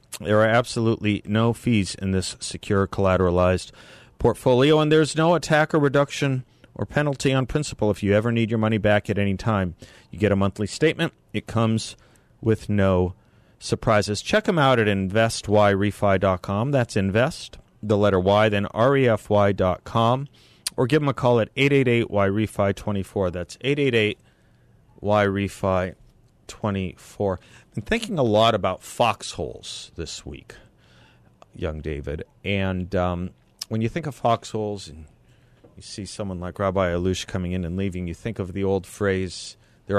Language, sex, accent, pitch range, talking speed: English, male, American, 95-115 Hz, 145 wpm